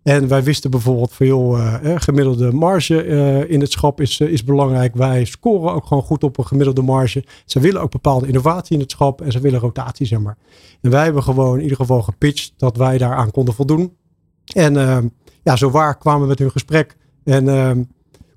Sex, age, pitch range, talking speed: male, 50-69, 130-150 Hz, 210 wpm